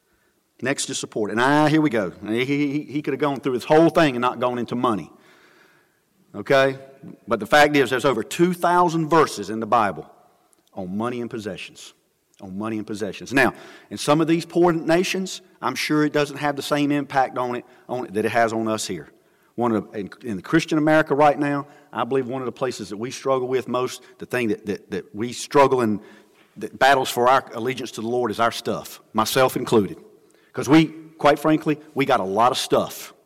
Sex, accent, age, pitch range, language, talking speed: male, American, 40-59, 115-150 Hz, English, 215 wpm